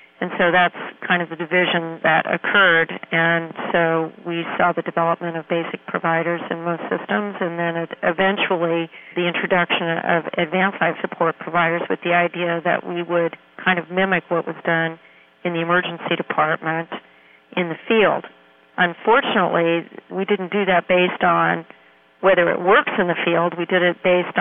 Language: English